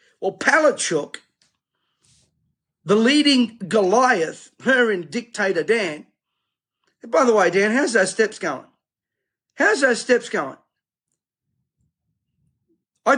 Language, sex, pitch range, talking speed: English, male, 185-255 Hz, 110 wpm